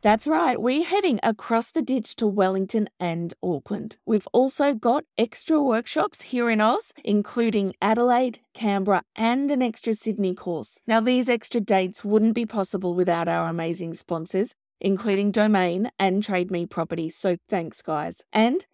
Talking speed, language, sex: 155 wpm, English, female